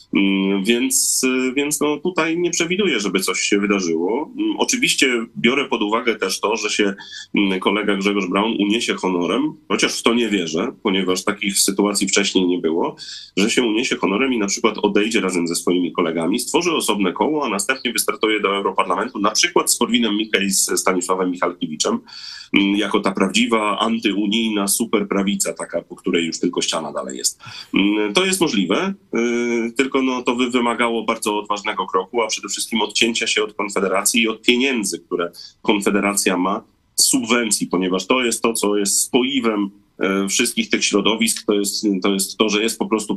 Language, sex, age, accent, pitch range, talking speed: Polish, male, 30-49, native, 100-120 Hz, 160 wpm